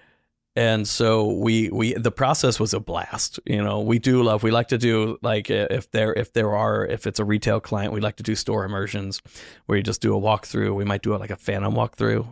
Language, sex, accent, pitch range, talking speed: English, male, American, 105-115 Hz, 240 wpm